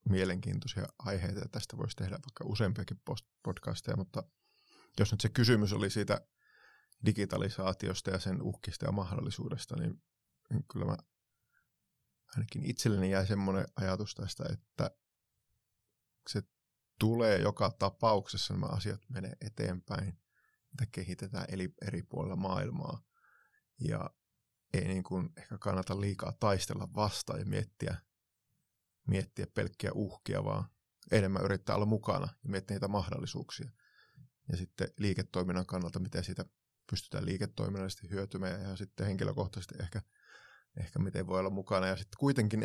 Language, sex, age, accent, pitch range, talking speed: Finnish, male, 30-49, native, 95-115 Hz, 125 wpm